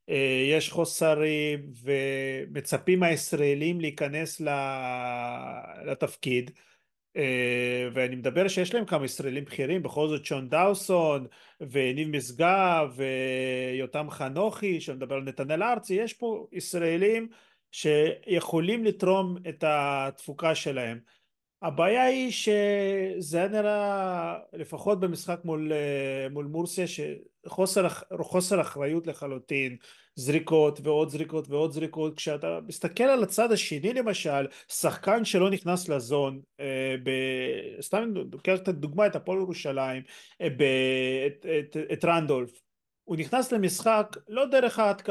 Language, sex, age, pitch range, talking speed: Hebrew, male, 40-59, 140-185 Hz, 100 wpm